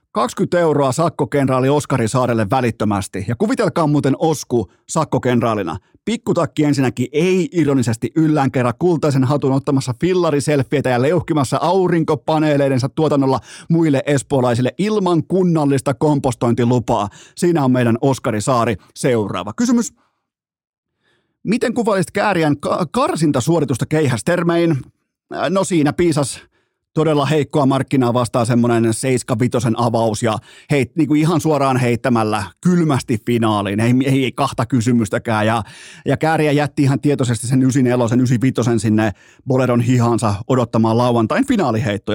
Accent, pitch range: native, 120-155 Hz